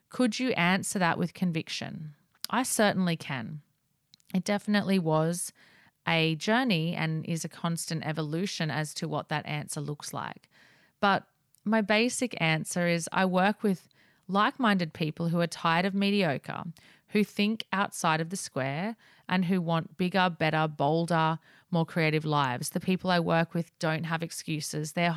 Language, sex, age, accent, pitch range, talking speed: English, female, 30-49, Australian, 155-185 Hz, 155 wpm